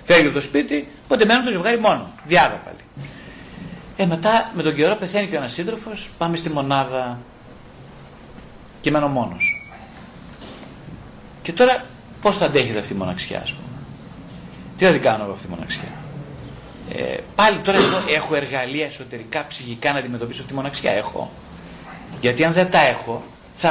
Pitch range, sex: 135-205 Hz, male